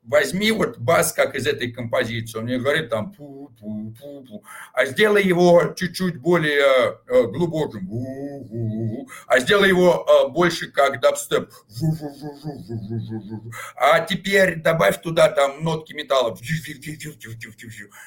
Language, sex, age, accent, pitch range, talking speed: Russian, male, 50-69, native, 130-180 Hz, 100 wpm